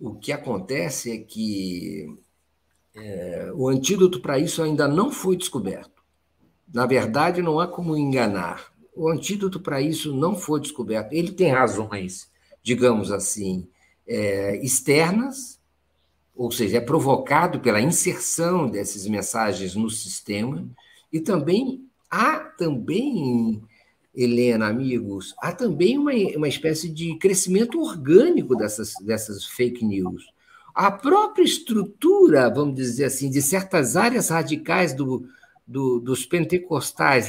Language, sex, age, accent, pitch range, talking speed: Portuguese, male, 50-69, Brazilian, 120-190 Hz, 120 wpm